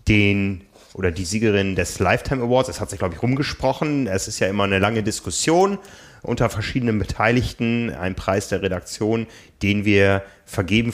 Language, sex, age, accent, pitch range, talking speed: German, male, 30-49, German, 100-120 Hz, 165 wpm